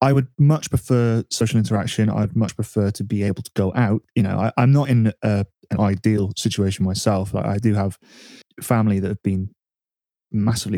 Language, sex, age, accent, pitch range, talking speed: English, male, 20-39, British, 105-125 Hz, 180 wpm